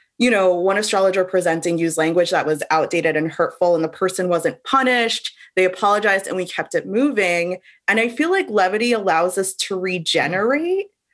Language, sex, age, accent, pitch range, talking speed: English, female, 20-39, American, 180-235 Hz, 180 wpm